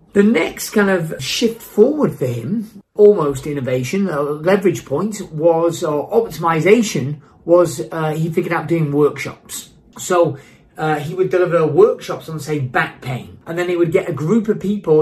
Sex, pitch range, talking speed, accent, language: male, 155-195 Hz, 165 wpm, British, English